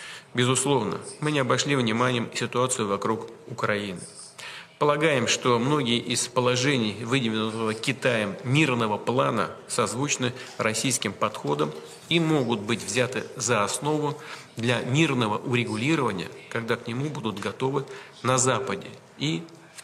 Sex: male